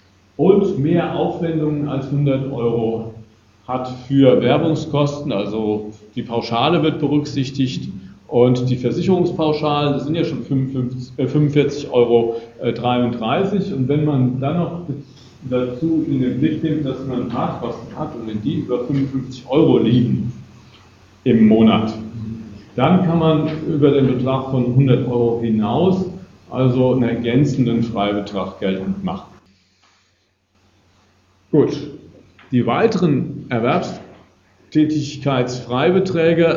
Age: 50-69